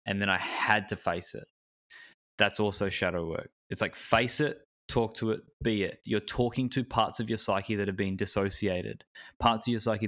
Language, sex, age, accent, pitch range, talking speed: English, male, 20-39, Australian, 95-110 Hz, 210 wpm